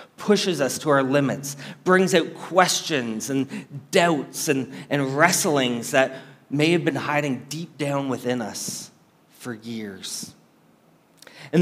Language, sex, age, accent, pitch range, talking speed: English, male, 30-49, American, 135-170 Hz, 130 wpm